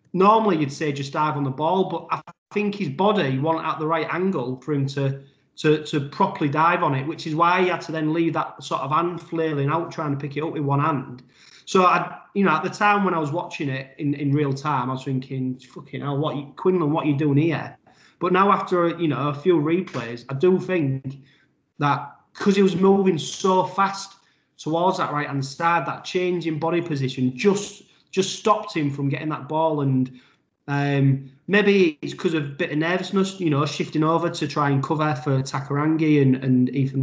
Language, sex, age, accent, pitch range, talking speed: English, male, 30-49, British, 135-170 Hz, 220 wpm